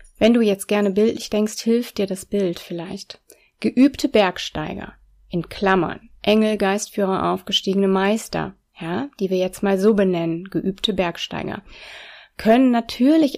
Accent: German